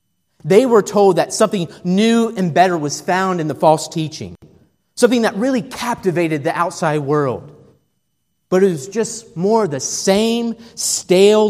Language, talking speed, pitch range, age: English, 150 wpm, 150-215 Hz, 30-49